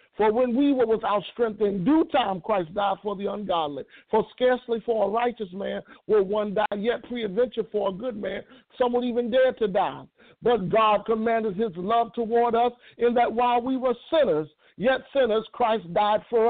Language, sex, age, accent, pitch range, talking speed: English, male, 60-79, American, 210-250 Hz, 195 wpm